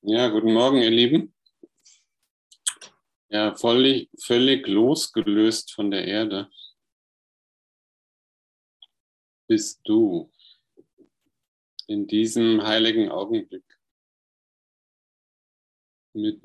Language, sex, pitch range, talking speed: German, male, 105-120 Hz, 65 wpm